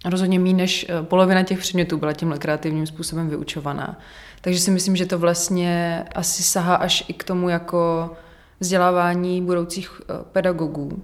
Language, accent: Czech, native